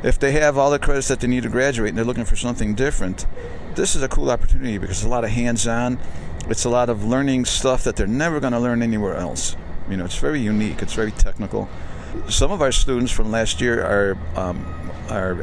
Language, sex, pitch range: English, male, 90-120 Hz